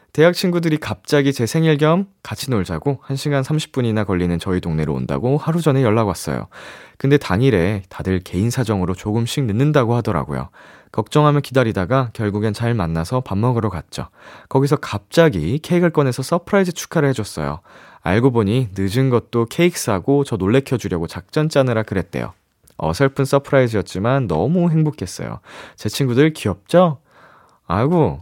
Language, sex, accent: Korean, male, native